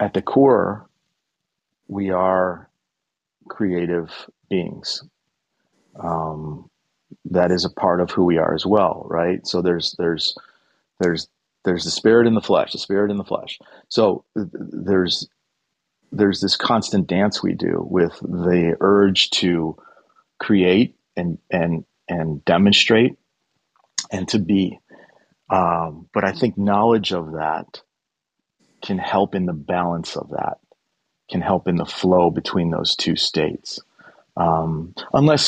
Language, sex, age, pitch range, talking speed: English, male, 40-59, 85-100 Hz, 135 wpm